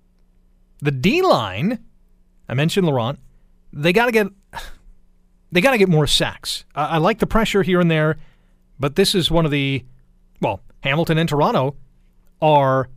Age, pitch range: 40-59, 130-180 Hz